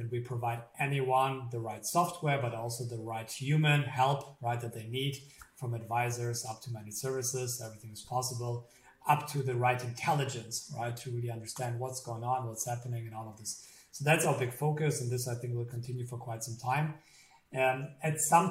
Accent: German